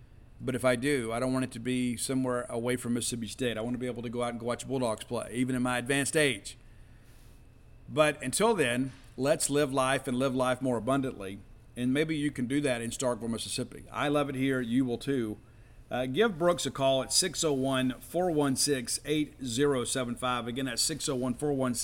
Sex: male